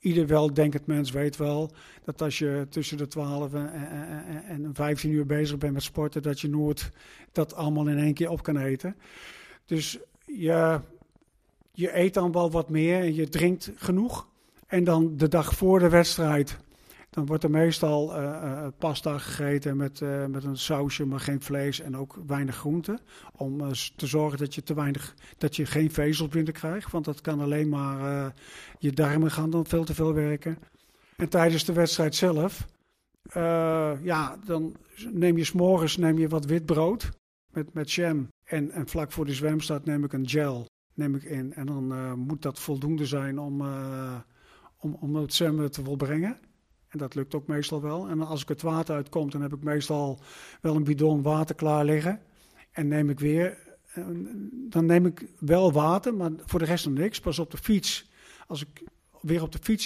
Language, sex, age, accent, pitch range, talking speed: Dutch, male, 50-69, Dutch, 145-165 Hz, 190 wpm